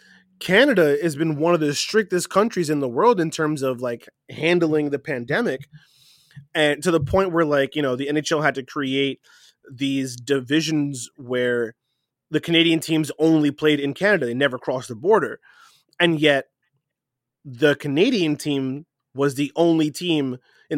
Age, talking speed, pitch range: 20-39, 160 wpm, 135-160 Hz